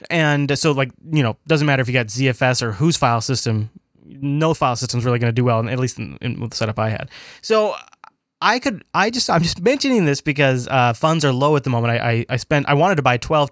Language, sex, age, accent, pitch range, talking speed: English, male, 20-39, American, 125-155 Hz, 255 wpm